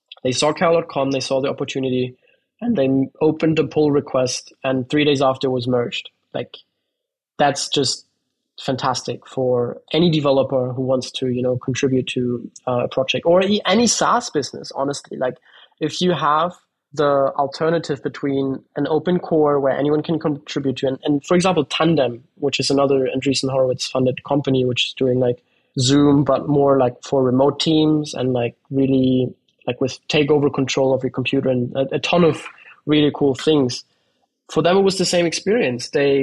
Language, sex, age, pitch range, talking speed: English, male, 20-39, 130-160 Hz, 170 wpm